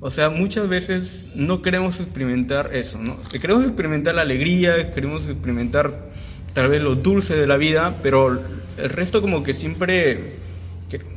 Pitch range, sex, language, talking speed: 125-165 Hz, male, Spanish, 160 wpm